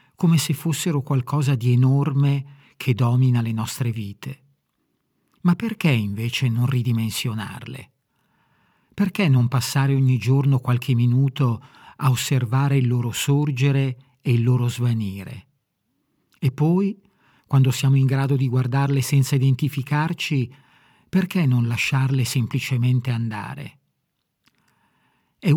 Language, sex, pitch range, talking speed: Italian, male, 125-145 Hz, 115 wpm